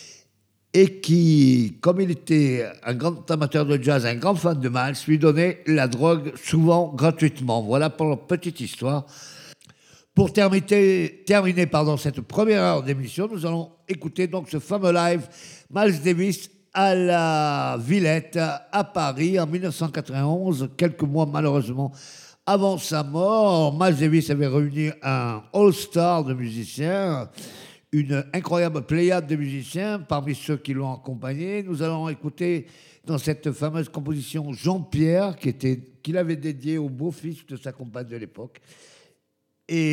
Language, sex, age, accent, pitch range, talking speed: French, male, 50-69, French, 140-180 Hz, 140 wpm